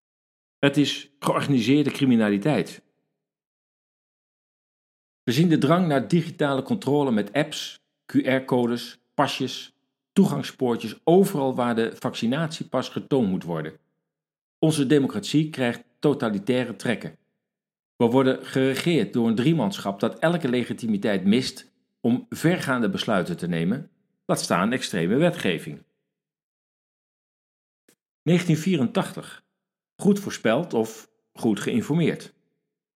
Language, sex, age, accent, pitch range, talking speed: Dutch, male, 50-69, Dutch, 115-160 Hz, 95 wpm